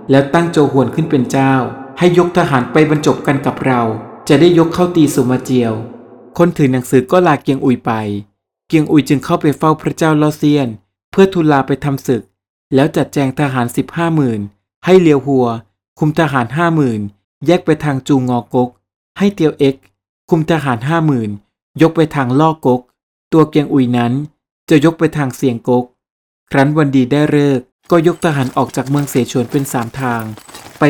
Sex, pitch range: male, 125-155 Hz